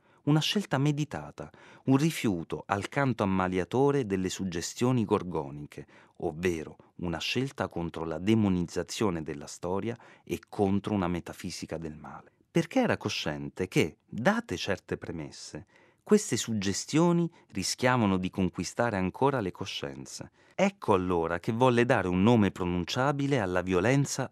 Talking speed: 125 wpm